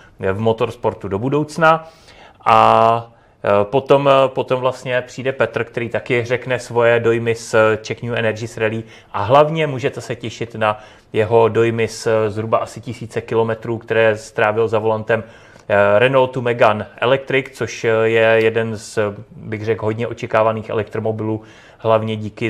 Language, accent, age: Czech, native, 30-49